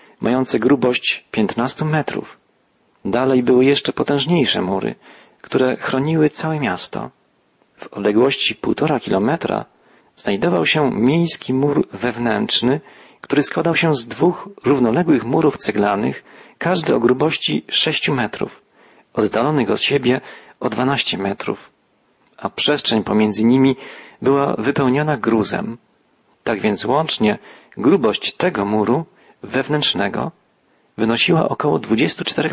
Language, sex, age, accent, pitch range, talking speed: Polish, male, 40-59, native, 115-140 Hz, 105 wpm